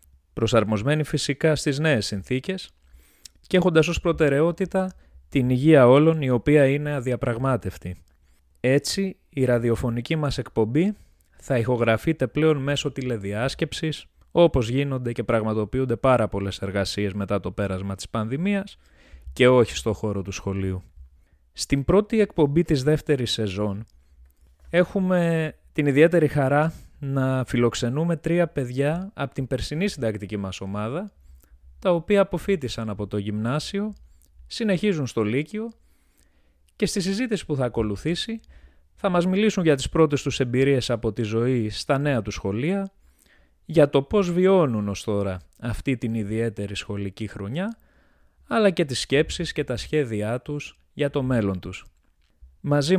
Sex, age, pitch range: male, 20-39, 100-155 Hz